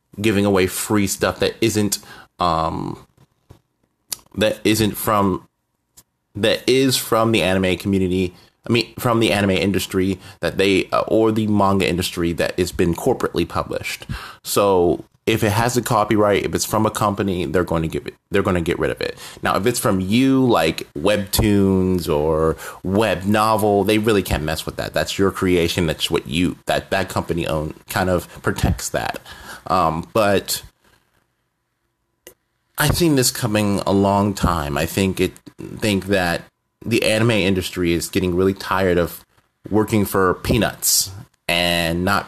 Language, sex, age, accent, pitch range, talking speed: English, male, 30-49, American, 90-110 Hz, 160 wpm